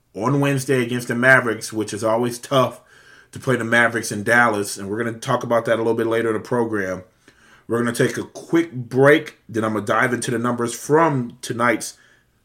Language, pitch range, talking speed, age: English, 115-140 Hz, 220 wpm, 30-49